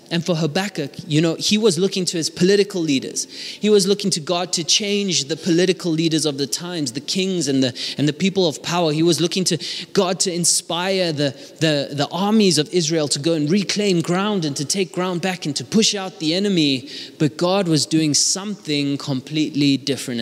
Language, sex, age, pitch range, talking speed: English, male, 20-39, 135-175 Hz, 210 wpm